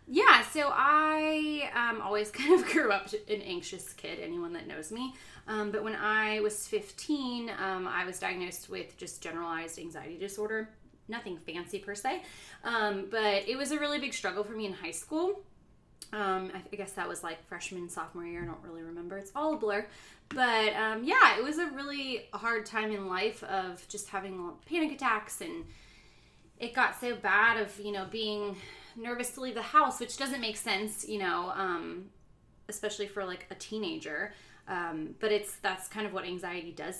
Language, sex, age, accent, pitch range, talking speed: English, female, 20-39, American, 185-235 Hz, 190 wpm